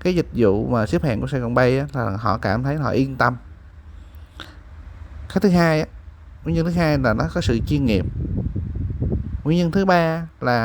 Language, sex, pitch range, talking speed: Vietnamese, male, 110-150 Hz, 205 wpm